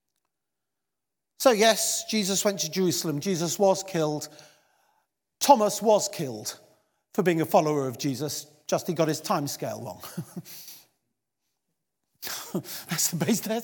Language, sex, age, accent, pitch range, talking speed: English, male, 50-69, British, 175-245 Hz, 115 wpm